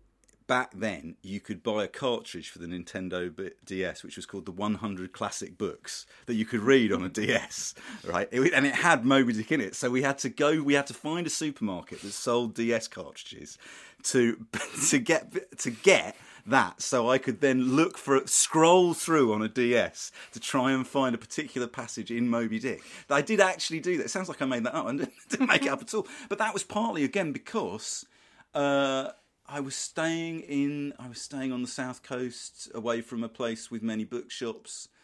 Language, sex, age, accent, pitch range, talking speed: English, male, 40-59, British, 105-145 Hz, 200 wpm